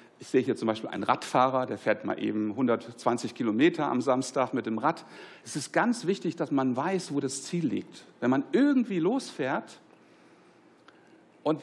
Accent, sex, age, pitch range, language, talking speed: German, male, 60-79, 140-190 Hz, German, 175 wpm